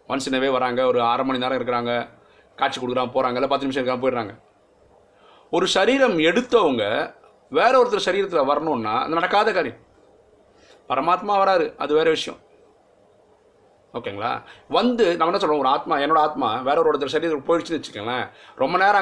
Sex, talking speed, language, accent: male, 145 wpm, Tamil, native